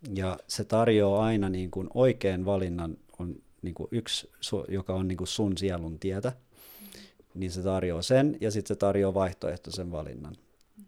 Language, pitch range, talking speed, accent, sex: Finnish, 90-105 Hz, 155 wpm, native, male